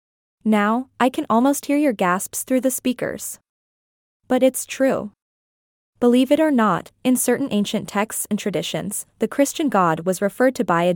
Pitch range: 195-255 Hz